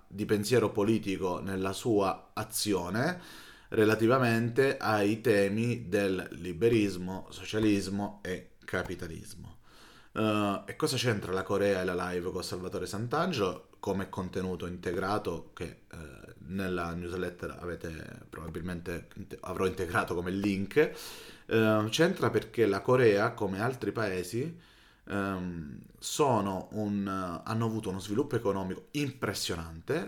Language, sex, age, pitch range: Italian, male, 30-49, 95-115 Hz